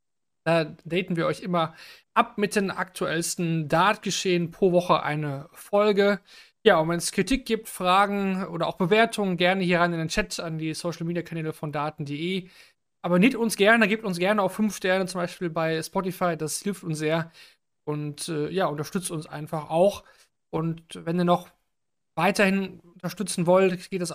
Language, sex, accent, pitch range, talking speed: German, male, German, 165-200 Hz, 175 wpm